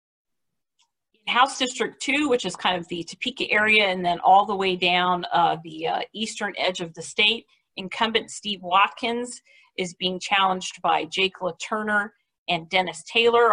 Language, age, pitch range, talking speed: English, 40-59, 180-230 Hz, 160 wpm